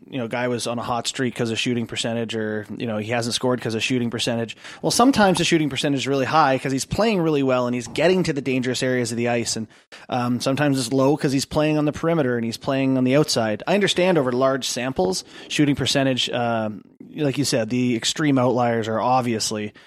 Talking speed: 235 wpm